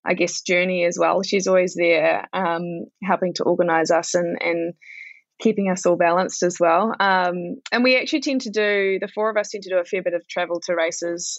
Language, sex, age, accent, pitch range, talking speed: English, female, 20-39, Australian, 170-205 Hz, 220 wpm